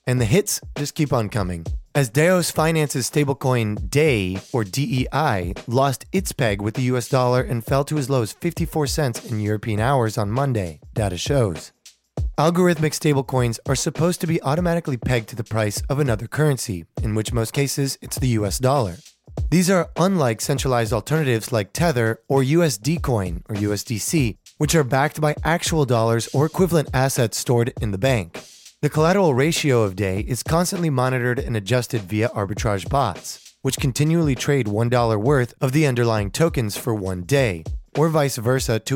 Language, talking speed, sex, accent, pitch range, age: English, 170 wpm, male, American, 115-150 Hz, 30-49